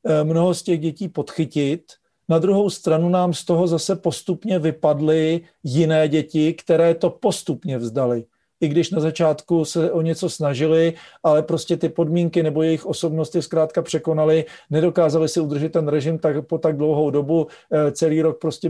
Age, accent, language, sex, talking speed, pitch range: 40-59, native, Czech, male, 160 wpm, 155-180 Hz